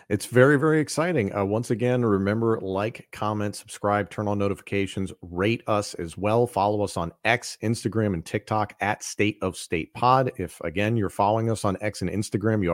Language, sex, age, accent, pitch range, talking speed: English, male, 40-59, American, 95-125 Hz, 190 wpm